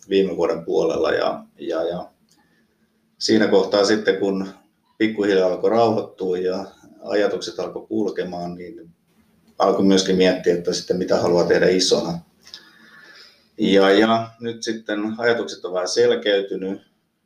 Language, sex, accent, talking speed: Finnish, male, native, 120 wpm